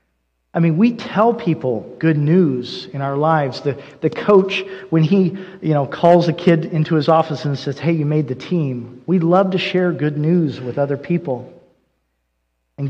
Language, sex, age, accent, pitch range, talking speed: English, male, 40-59, American, 125-170 Hz, 185 wpm